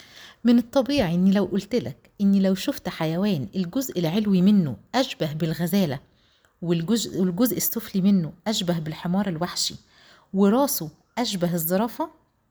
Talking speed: 115 wpm